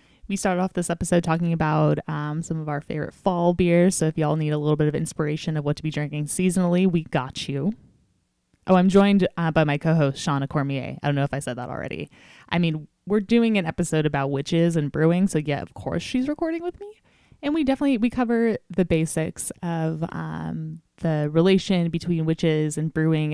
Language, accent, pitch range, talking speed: English, American, 150-190 Hz, 210 wpm